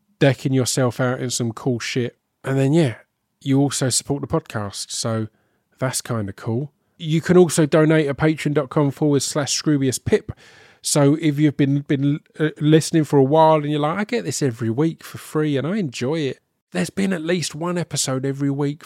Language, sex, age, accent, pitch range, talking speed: English, male, 20-39, British, 120-150 Hz, 190 wpm